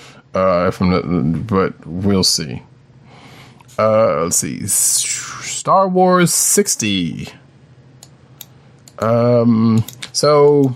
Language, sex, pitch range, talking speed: English, male, 100-125 Hz, 85 wpm